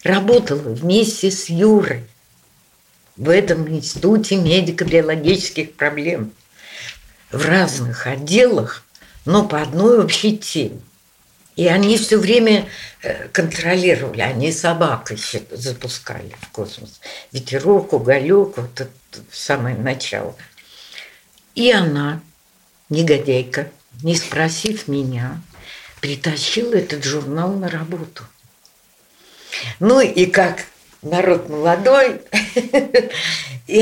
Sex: female